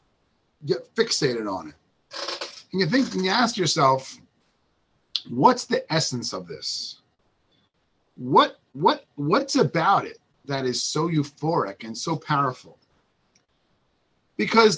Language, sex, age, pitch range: English, male, 40-59, 135-175 Hz